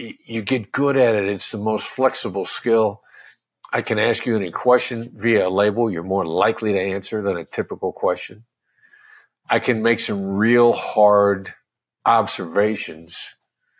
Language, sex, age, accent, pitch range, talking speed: English, male, 50-69, American, 100-130 Hz, 150 wpm